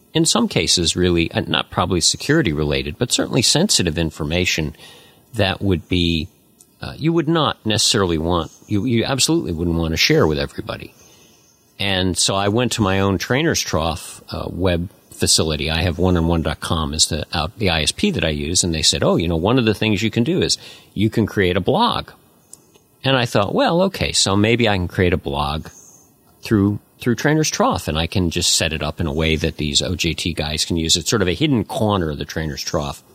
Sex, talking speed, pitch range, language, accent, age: male, 205 wpm, 80-105 Hz, English, American, 50-69